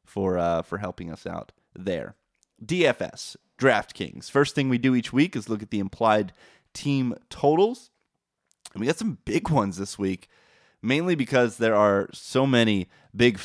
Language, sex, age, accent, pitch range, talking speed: English, male, 20-39, American, 100-125 Hz, 165 wpm